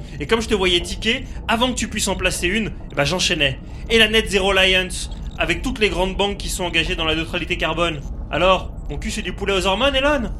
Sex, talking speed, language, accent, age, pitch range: male, 240 wpm, French, French, 30-49, 140-205 Hz